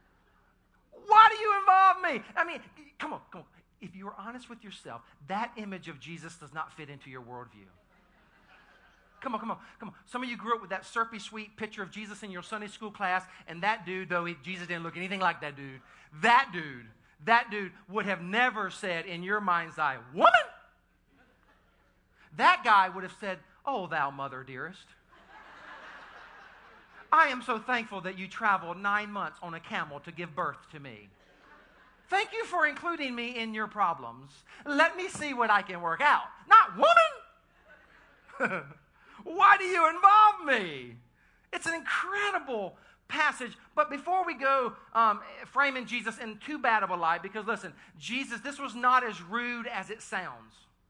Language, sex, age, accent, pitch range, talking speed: English, male, 40-59, American, 175-255 Hz, 180 wpm